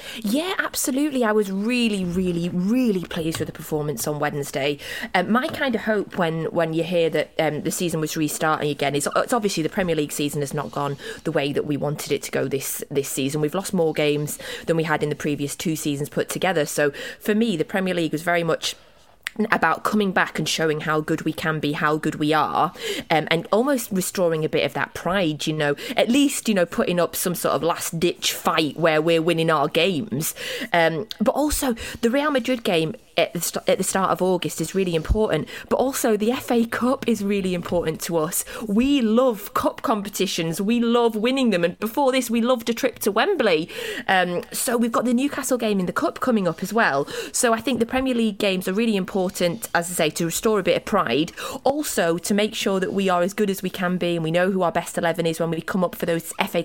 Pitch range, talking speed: 160-225 Hz, 230 wpm